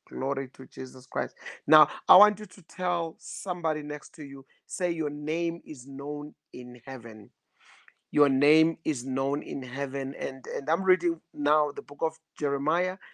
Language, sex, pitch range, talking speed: English, male, 135-160 Hz, 165 wpm